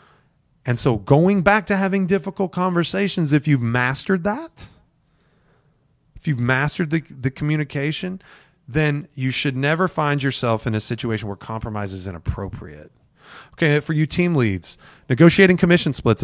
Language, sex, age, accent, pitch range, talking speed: English, male, 30-49, American, 125-165 Hz, 145 wpm